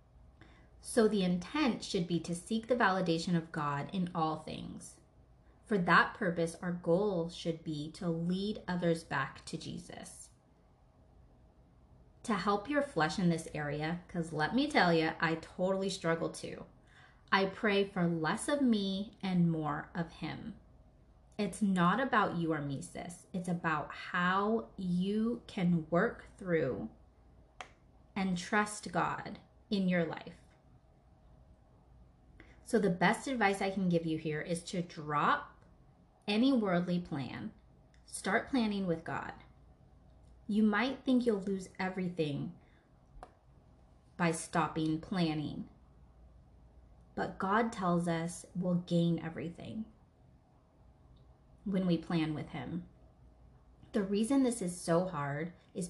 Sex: female